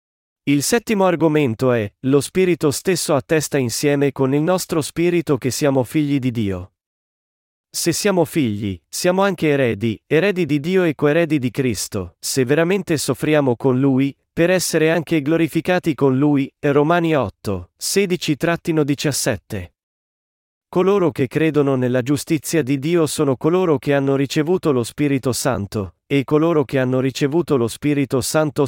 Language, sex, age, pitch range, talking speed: Italian, male, 40-59, 125-155 Hz, 140 wpm